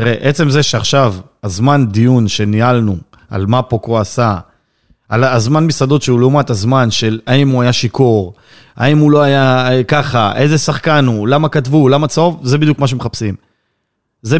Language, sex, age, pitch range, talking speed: Hebrew, male, 30-49, 115-155 Hz, 165 wpm